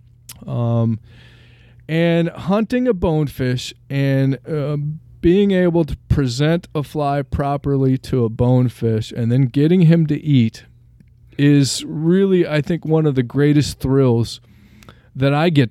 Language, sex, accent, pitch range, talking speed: English, male, American, 120-150 Hz, 135 wpm